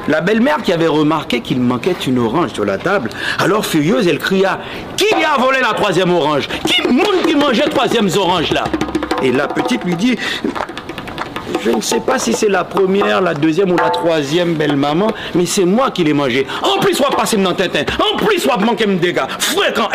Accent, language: French, French